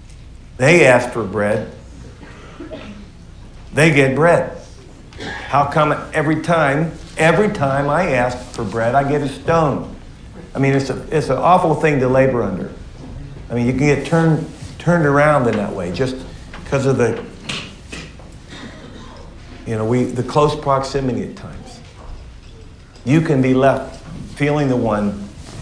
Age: 50-69